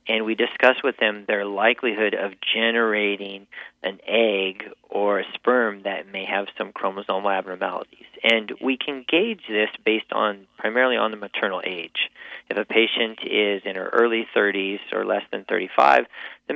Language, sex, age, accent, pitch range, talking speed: English, male, 40-59, American, 100-125 Hz, 165 wpm